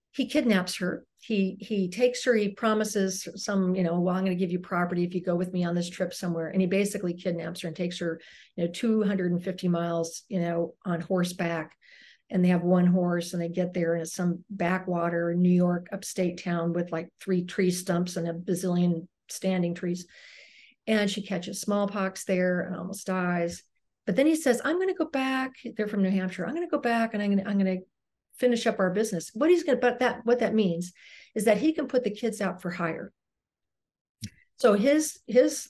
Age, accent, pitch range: 50-69, American, 180-215 Hz